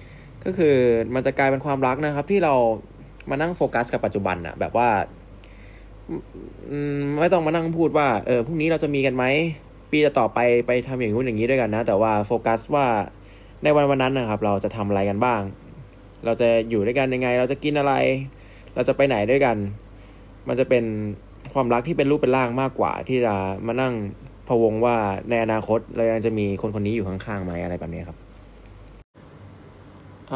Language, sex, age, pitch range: Thai, male, 20-39, 100-135 Hz